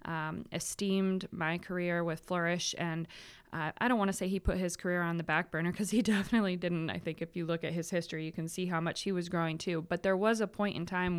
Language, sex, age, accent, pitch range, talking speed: English, female, 20-39, American, 165-185 Hz, 265 wpm